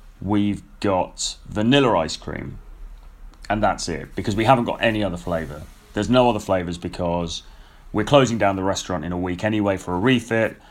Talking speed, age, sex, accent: 180 wpm, 30-49, male, British